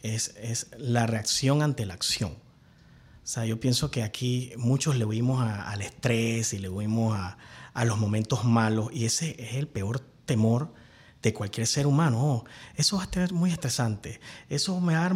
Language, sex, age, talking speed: Spanish, male, 30-49, 195 wpm